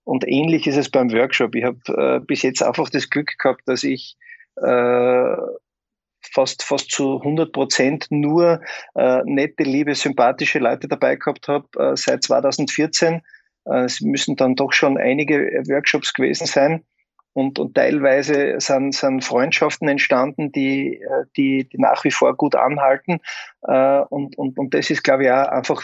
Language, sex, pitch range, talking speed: German, male, 135-155 Hz, 160 wpm